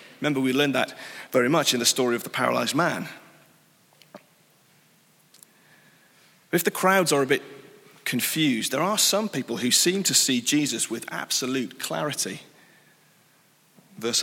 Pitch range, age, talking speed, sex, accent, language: 135-180 Hz, 30-49, 140 wpm, male, British, English